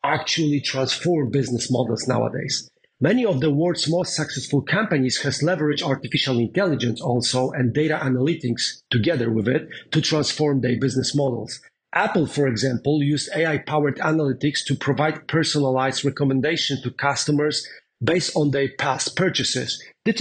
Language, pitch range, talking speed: English, 130-160 Hz, 140 wpm